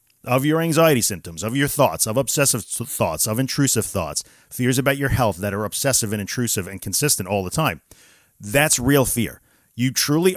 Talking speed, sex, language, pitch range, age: 185 wpm, male, English, 105-140 Hz, 40-59